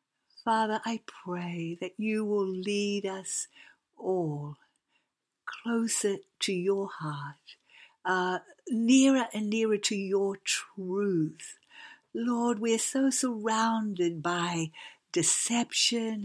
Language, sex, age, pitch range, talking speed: English, female, 60-79, 180-235 Hz, 100 wpm